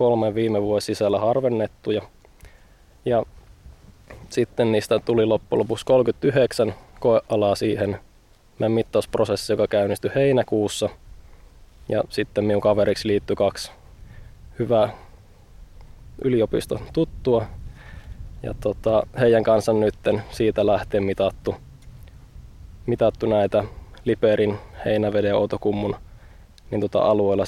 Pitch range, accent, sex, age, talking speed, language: 95-110 Hz, native, male, 20-39, 95 wpm, Finnish